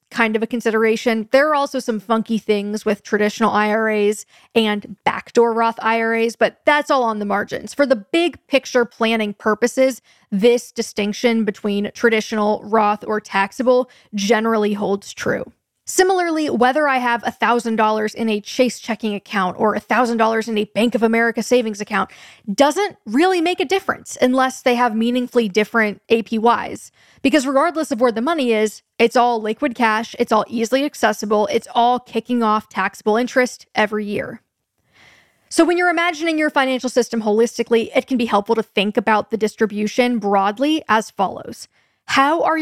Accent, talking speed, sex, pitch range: American, 160 wpm, female, 210-255 Hz